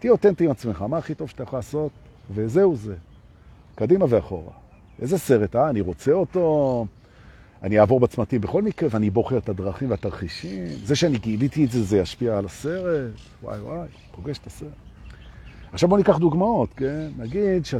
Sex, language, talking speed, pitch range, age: male, Hebrew, 130 wpm, 100-145 Hz, 50-69